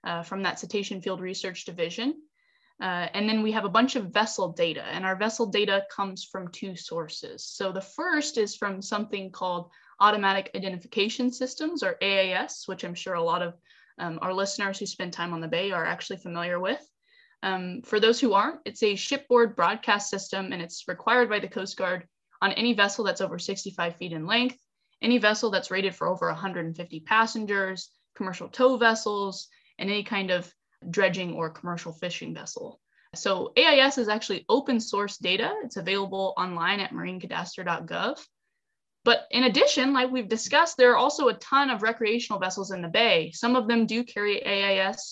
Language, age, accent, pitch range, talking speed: English, 10-29, American, 190-235 Hz, 180 wpm